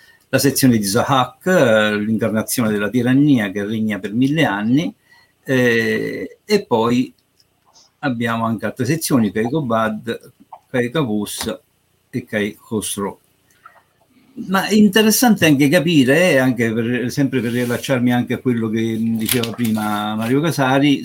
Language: Italian